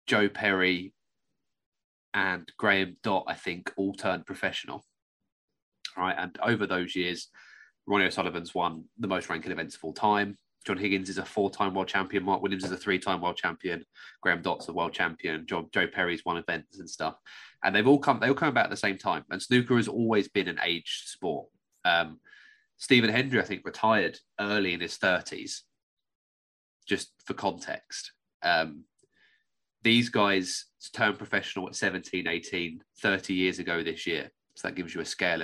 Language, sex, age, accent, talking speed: English, male, 20-39, British, 175 wpm